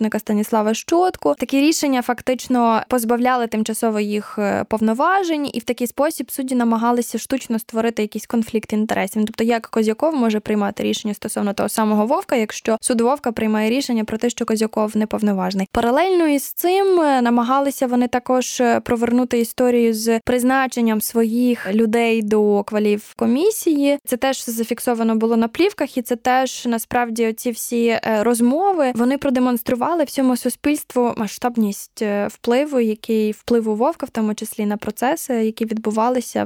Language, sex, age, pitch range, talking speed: Ukrainian, female, 10-29, 220-255 Hz, 140 wpm